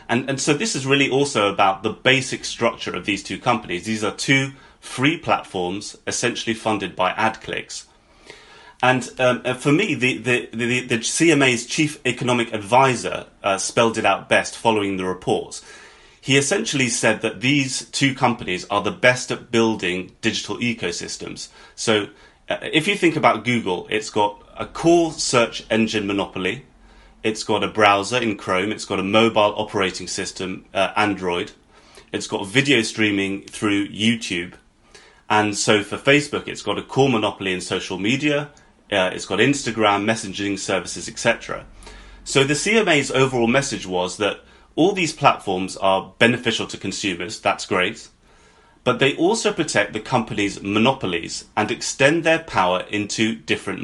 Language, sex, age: English, male, 30-49